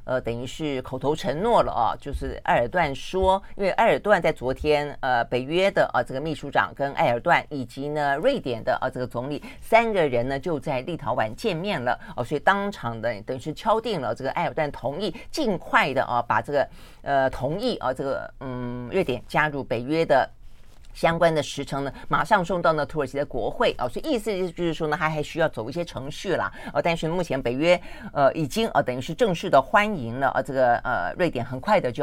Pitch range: 130-175 Hz